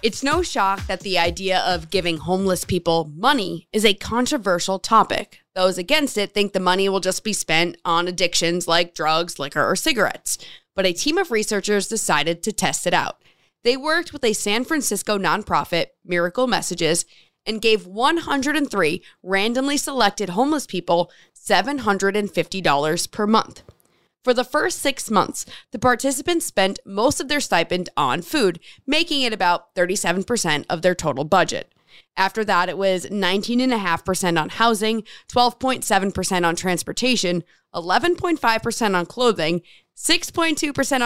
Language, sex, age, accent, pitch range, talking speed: English, female, 20-39, American, 180-255 Hz, 140 wpm